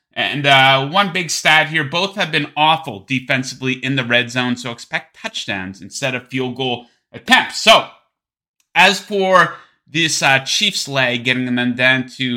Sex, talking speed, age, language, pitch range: male, 165 wpm, 30-49, English, 125-175 Hz